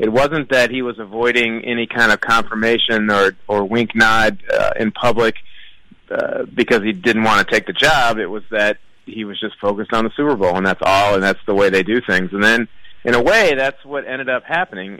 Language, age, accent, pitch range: English, 30-49, American, 105-125 Hz